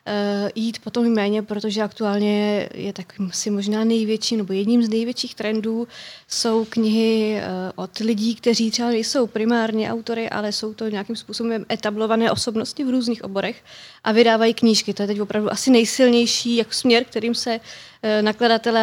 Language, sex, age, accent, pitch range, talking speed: Czech, female, 20-39, native, 205-230 Hz, 155 wpm